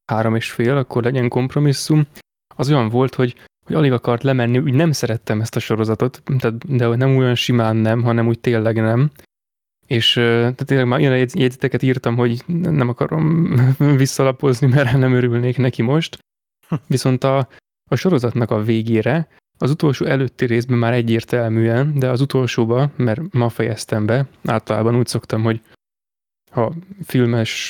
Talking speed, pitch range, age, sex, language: 150 wpm, 115-135 Hz, 20-39, male, Hungarian